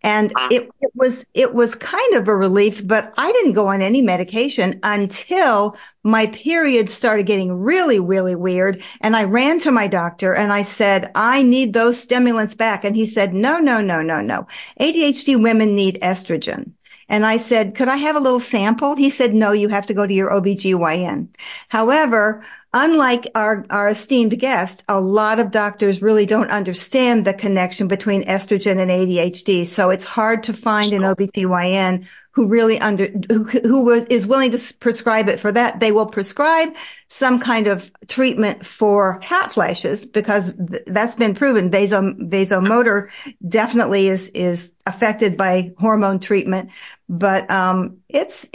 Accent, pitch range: American, 195-245 Hz